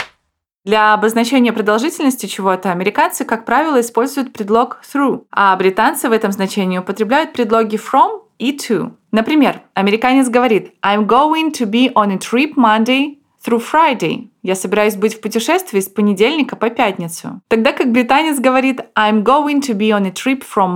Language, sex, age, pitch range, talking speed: Russian, female, 20-39, 210-255 Hz, 155 wpm